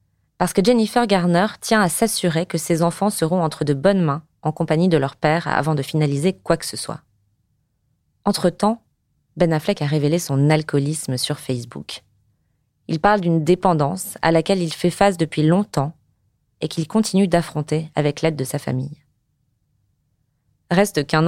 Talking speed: 165 wpm